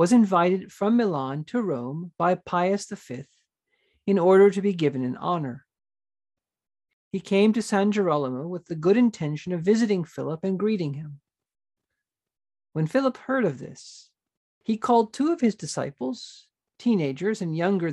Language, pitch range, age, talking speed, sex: English, 150-210 Hz, 50-69, 150 wpm, male